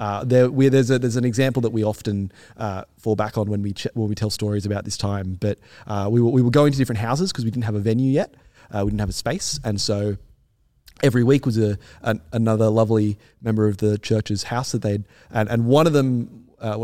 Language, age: English, 20-39